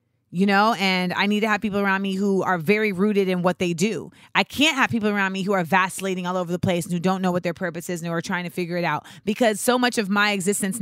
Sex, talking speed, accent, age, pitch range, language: female, 295 wpm, American, 30-49, 185-230 Hz, English